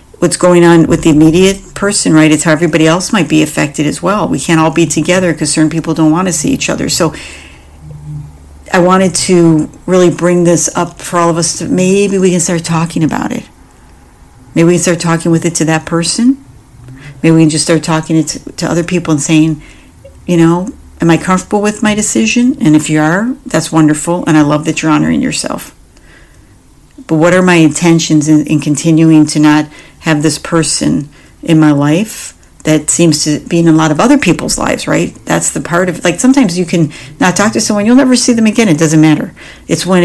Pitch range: 150-175 Hz